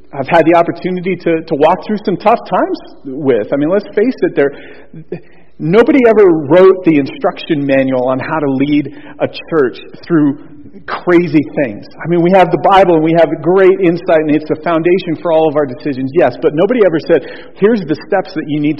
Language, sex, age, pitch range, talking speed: English, male, 40-59, 125-170 Hz, 205 wpm